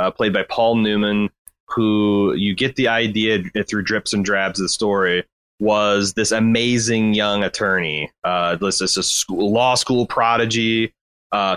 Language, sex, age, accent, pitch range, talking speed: English, male, 30-49, American, 100-120 Hz, 160 wpm